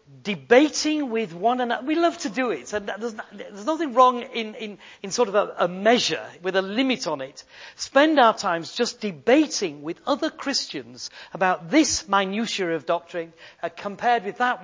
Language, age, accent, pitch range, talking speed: English, 40-59, British, 185-265 Hz, 170 wpm